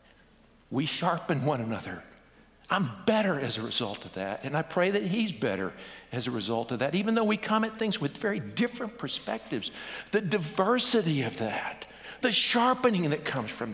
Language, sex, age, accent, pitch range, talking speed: English, male, 50-69, American, 120-160 Hz, 180 wpm